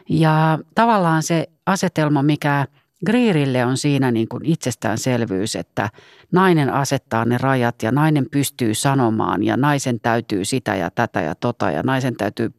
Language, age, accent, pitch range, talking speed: Finnish, 40-59, native, 115-165 Hz, 150 wpm